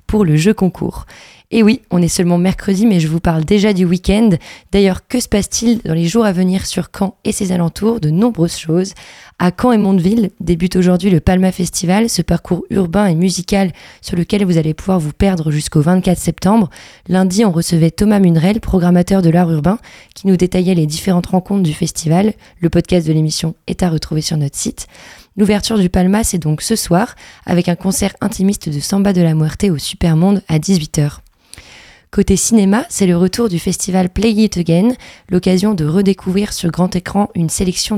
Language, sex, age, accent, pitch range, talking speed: French, female, 20-39, Belgian, 170-200 Hz, 195 wpm